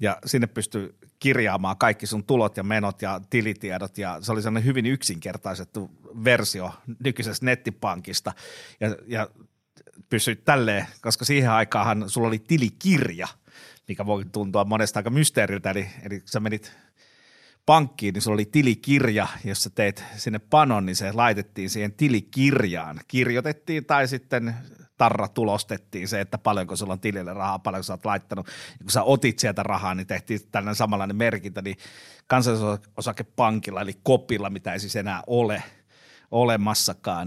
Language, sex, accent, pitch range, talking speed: Finnish, male, native, 100-120 Hz, 150 wpm